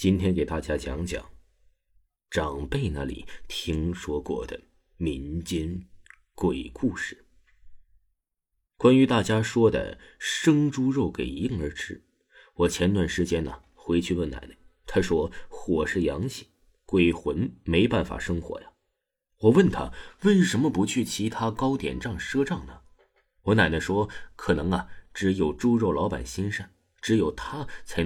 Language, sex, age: Chinese, male, 30-49